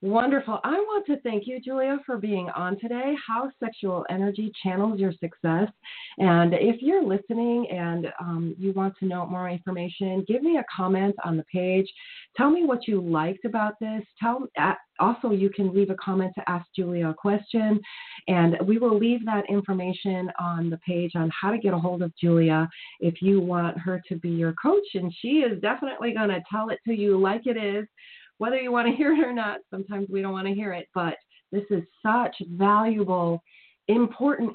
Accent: American